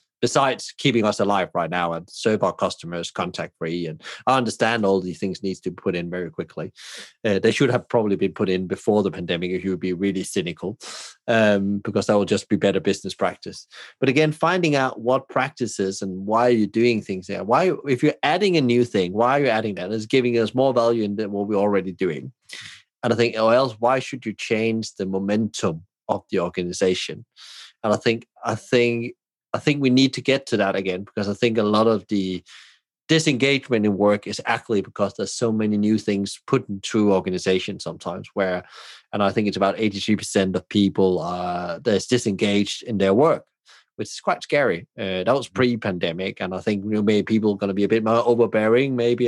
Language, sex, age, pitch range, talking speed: English, male, 30-49, 95-120 Hz, 210 wpm